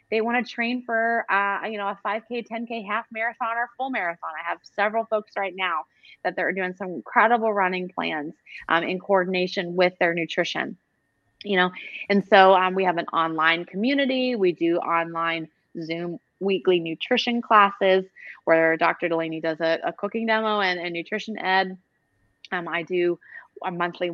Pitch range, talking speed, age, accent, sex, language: 170-215 Hz, 170 wpm, 20-39, American, female, English